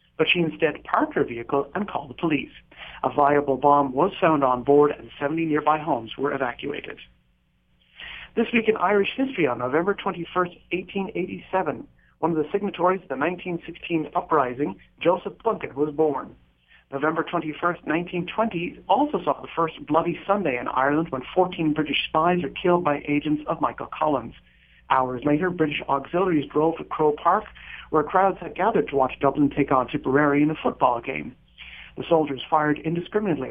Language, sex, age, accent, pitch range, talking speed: English, male, 40-59, American, 140-175 Hz, 165 wpm